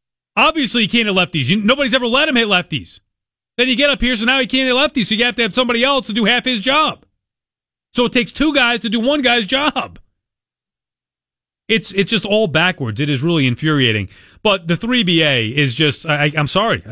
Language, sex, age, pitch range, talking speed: English, male, 30-49, 135-185 Hz, 220 wpm